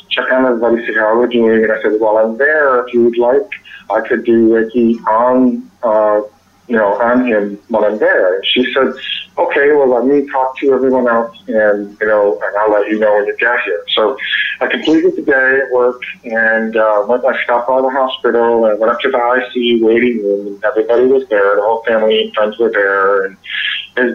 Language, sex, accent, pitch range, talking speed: English, male, American, 110-130 Hz, 225 wpm